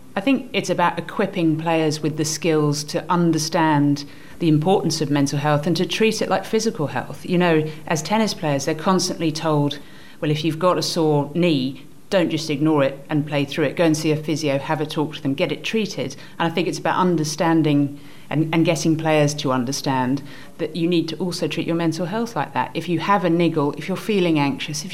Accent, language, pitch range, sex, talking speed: British, English, 145-180 Hz, female, 220 wpm